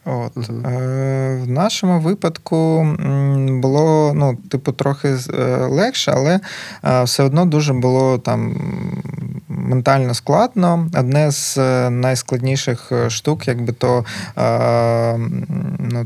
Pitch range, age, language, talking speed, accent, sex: 125-150 Hz, 20-39, Ukrainian, 90 wpm, native, male